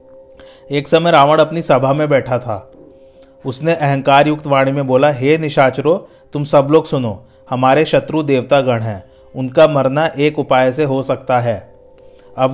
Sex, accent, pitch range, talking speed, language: male, native, 130-155 Hz, 160 wpm, Hindi